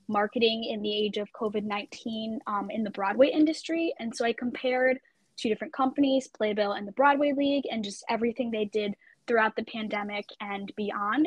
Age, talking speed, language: 10-29, 170 wpm, English